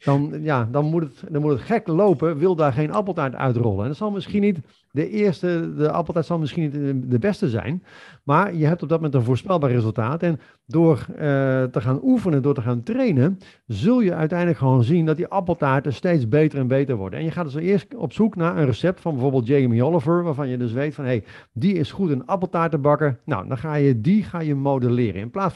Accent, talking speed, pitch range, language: Dutch, 235 wpm, 135-170 Hz, Dutch